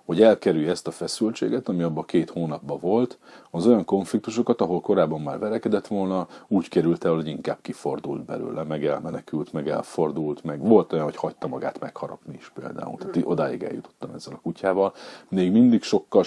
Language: Hungarian